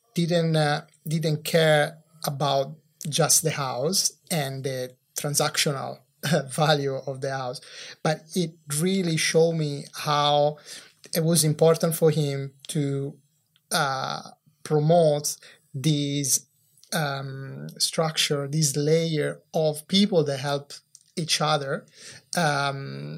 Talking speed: 110 wpm